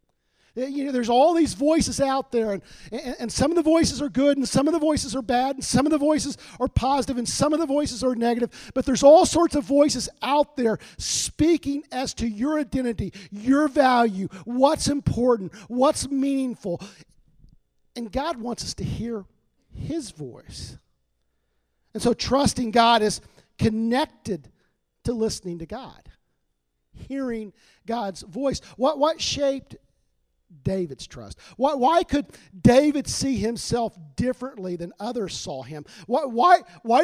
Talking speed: 155 wpm